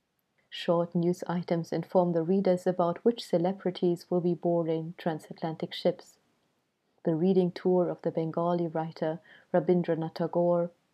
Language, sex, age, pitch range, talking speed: English, female, 30-49, 155-195 Hz, 125 wpm